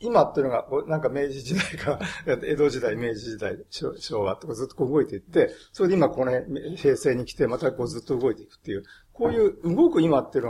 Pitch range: 135-225 Hz